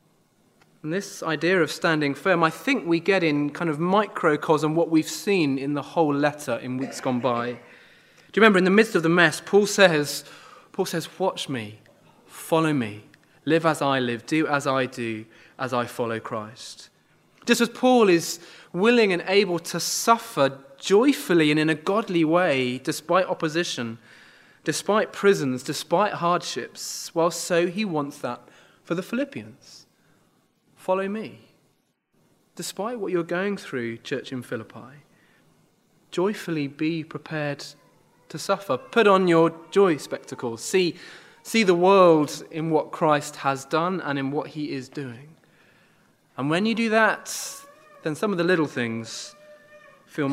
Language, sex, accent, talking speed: English, male, British, 155 wpm